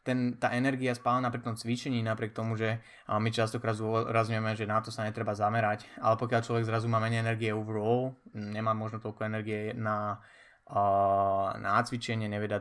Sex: male